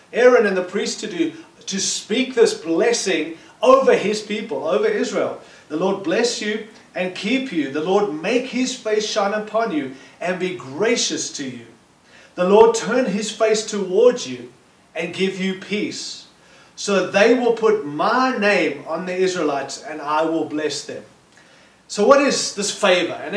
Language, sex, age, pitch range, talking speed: English, male, 30-49, 160-225 Hz, 170 wpm